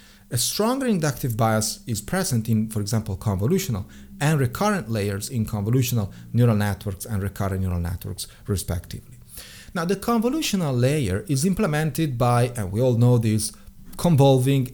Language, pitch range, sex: English, 105-140 Hz, male